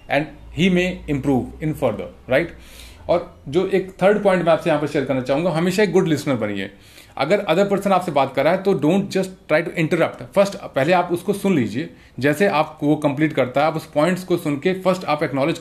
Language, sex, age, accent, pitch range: Hindi, male, 40-59, native, 140-185 Hz